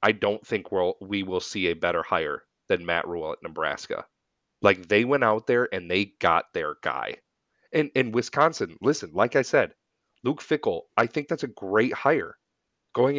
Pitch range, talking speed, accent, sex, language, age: 95-115 Hz, 185 wpm, American, male, English, 30-49